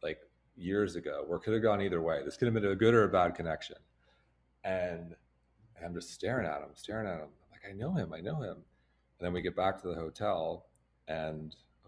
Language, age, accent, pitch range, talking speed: English, 40-59, American, 65-100 Hz, 230 wpm